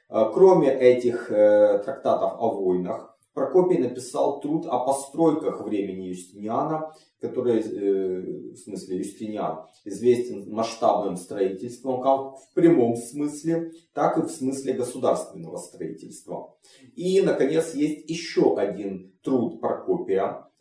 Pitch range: 115-165 Hz